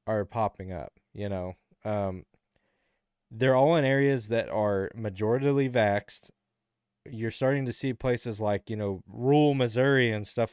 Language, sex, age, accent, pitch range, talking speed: English, male, 20-39, American, 105-130 Hz, 150 wpm